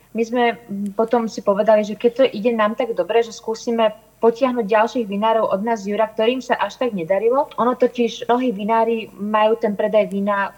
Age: 20-39